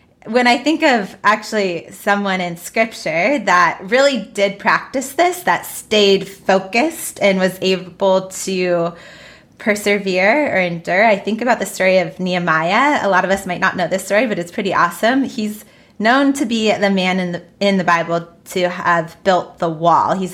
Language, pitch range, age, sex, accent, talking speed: English, 180-215 Hz, 20-39, female, American, 175 wpm